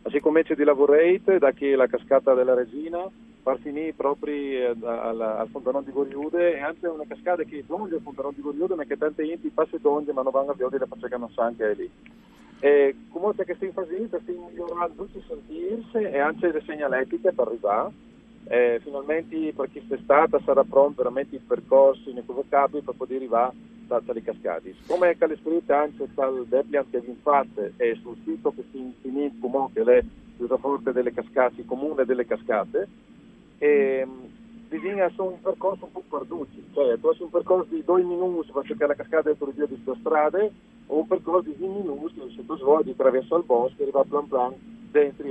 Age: 40-59